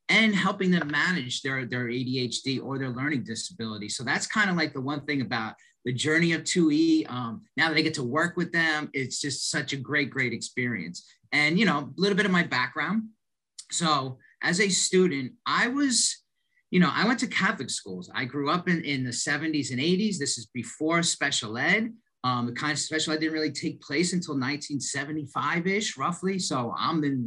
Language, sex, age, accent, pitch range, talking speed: English, male, 30-49, American, 130-170 Hz, 205 wpm